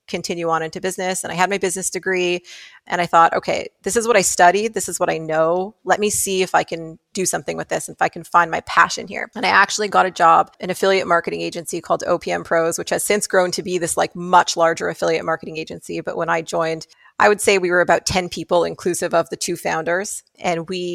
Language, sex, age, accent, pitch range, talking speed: English, female, 30-49, American, 165-195 Hz, 250 wpm